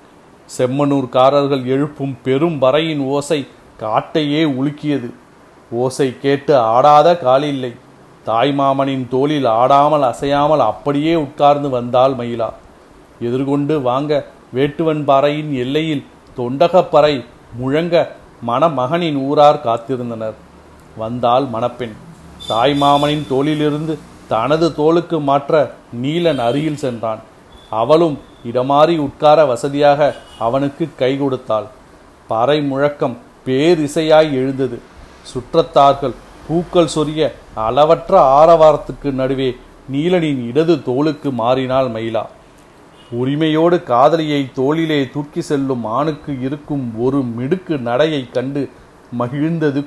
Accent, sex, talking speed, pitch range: native, male, 90 wpm, 125-150 Hz